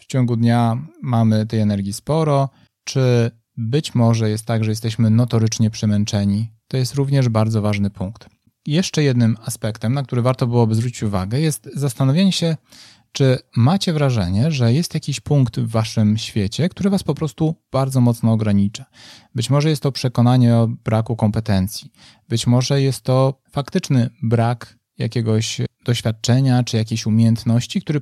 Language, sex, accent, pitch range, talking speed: Polish, male, native, 115-145 Hz, 150 wpm